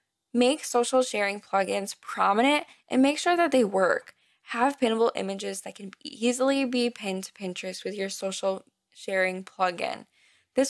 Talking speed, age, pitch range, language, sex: 150 wpm, 10-29, 200-255 Hz, English, female